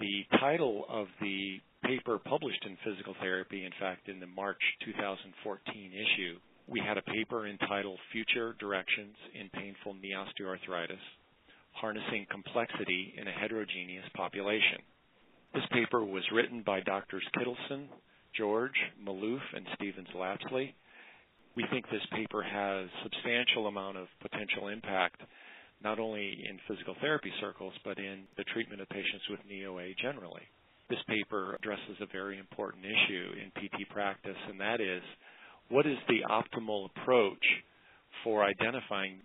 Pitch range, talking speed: 95-110 Hz, 140 wpm